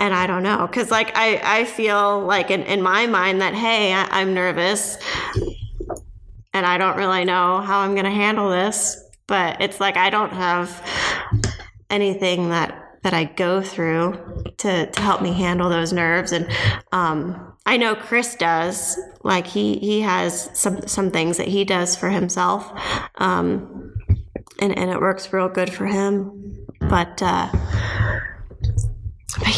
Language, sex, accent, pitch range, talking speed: English, female, American, 175-205 Hz, 160 wpm